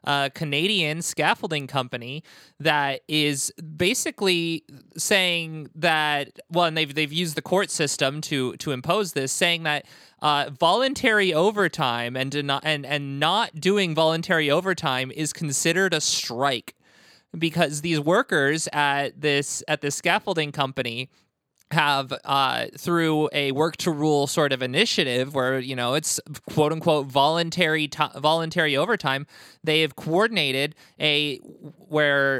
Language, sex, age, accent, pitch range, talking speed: English, male, 20-39, American, 140-185 Hz, 130 wpm